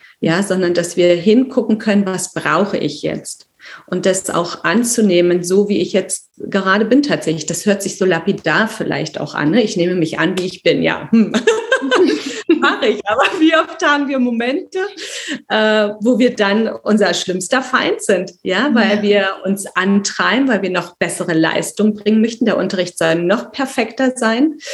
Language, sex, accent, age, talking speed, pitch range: German, female, German, 30-49, 175 wpm, 180-230 Hz